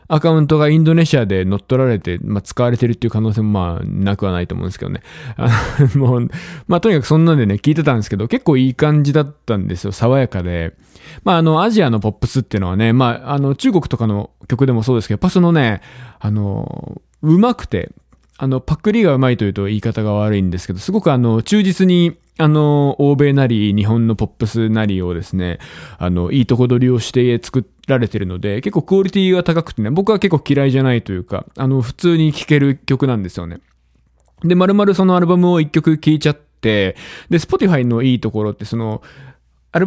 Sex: male